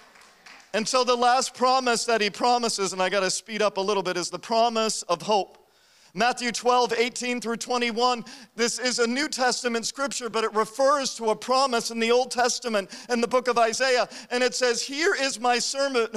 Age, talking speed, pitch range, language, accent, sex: 50-69, 200 wpm, 215-255 Hz, English, American, male